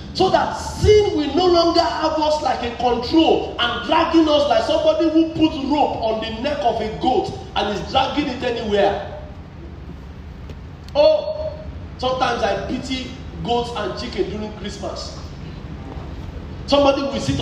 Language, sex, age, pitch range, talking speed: English, male, 30-49, 195-320 Hz, 145 wpm